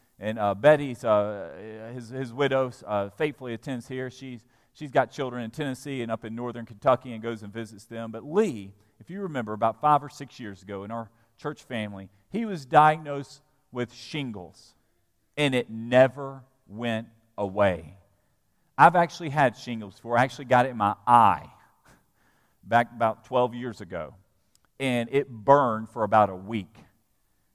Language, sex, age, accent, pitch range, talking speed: English, male, 40-59, American, 110-155 Hz, 165 wpm